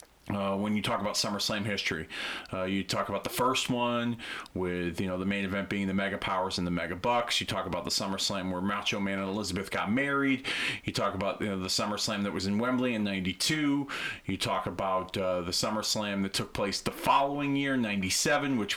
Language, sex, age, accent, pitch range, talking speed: English, male, 30-49, American, 100-135 Hz, 215 wpm